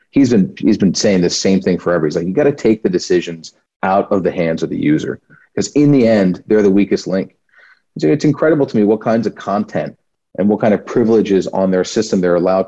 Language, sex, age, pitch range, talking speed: English, male, 40-59, 95-145 Hz, 235 wpm